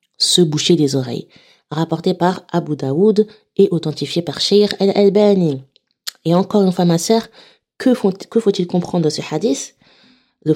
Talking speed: 165 wpm